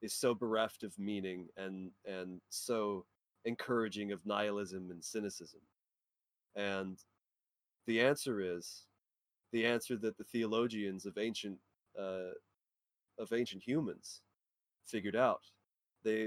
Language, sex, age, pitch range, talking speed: English, male, 30-49, 100-120 Hz, 115 wpm